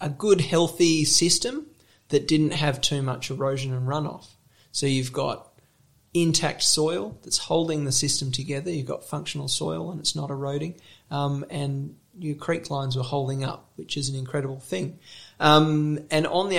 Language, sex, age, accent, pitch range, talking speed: English, male, 30-49, Australian, 130-150 Hz, 170 wpm